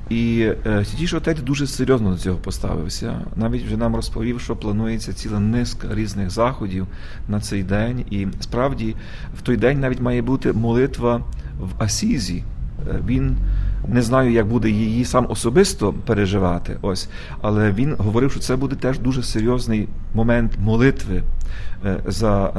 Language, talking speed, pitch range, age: Ukrainian, 140 wpm, 100-130 Hz, 40-59